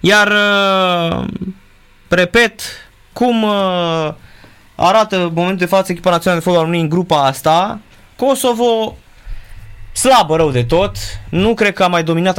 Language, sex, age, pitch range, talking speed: Romanian, male, 20-39, 115-170 Hz, 130 wpm